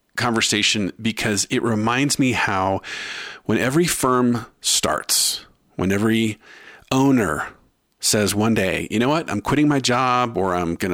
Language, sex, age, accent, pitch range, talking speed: English, male, 50-69, American, 100-135 Hz, 145 wpm